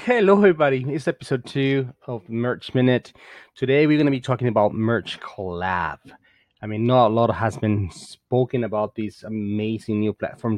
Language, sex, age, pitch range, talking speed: English, male, 30-49, 100-125 Hz, 170 wpm